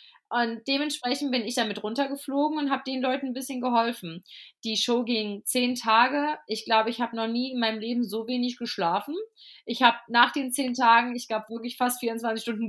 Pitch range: 220-265 Hz